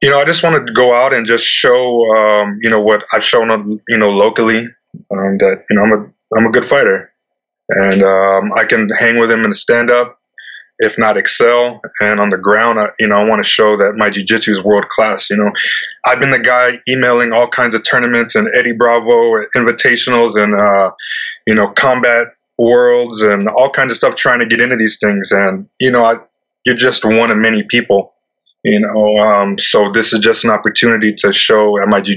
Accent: American